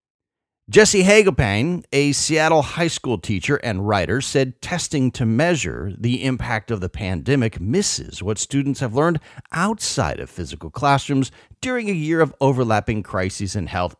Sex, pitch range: male, 120-180 Hz